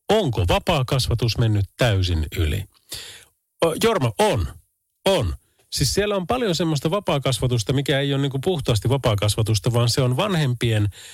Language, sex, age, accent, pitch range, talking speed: Finnish, male, 40-59, native, 105-150 Hz, 135 wpm